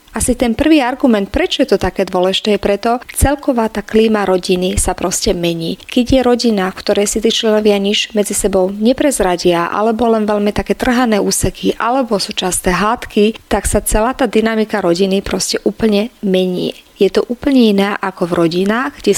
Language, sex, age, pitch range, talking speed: Slovak, female, 30-49, 185-230 Hz, 180 wpm